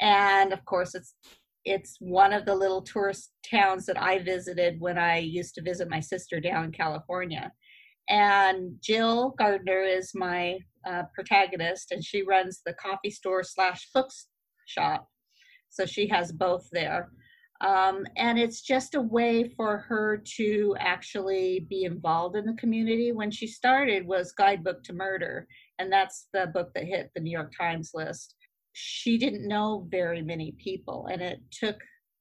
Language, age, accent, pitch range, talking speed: English, 40-59, American, 175-210 Hz, 160 wpm